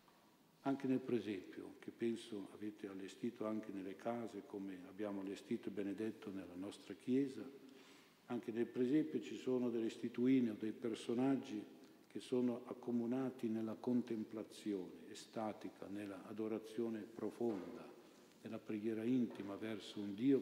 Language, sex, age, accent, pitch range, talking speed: Italian, male, 50-69, native, 105-120 Hz, 125 wpm